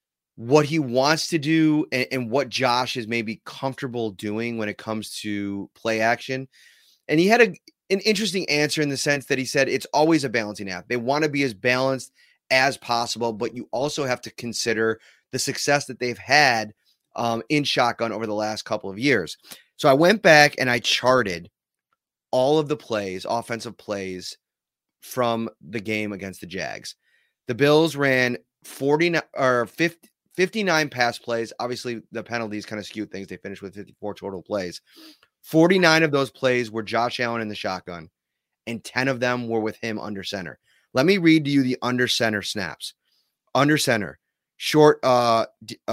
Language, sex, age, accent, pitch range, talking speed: English, male, 30-49, American, 110-145 Hz, 180 wpm